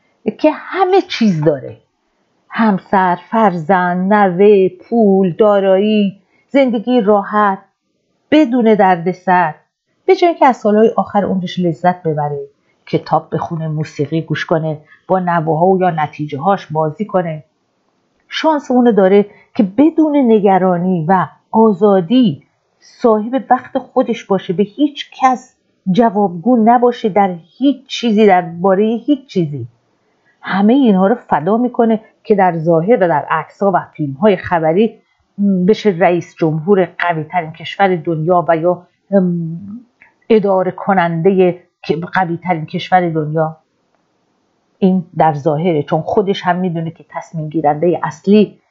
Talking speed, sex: 120 wpm, female